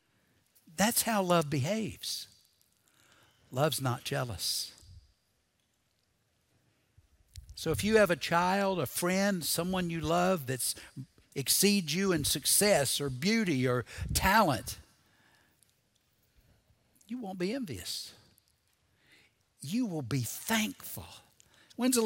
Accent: American